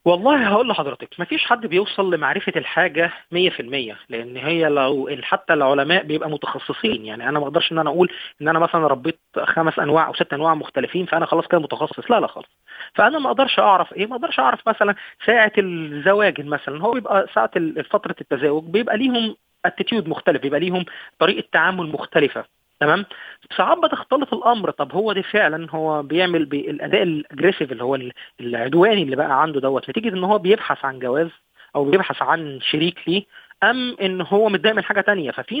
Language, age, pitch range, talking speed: Arabic, 30-49, 150-205 Hz, 180 wpm